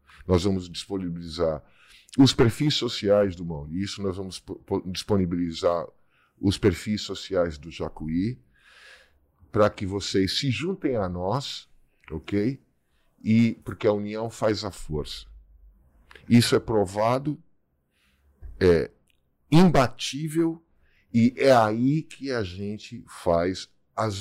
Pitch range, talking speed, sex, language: 85-120 Hz, 110 wpm, male, Portuguese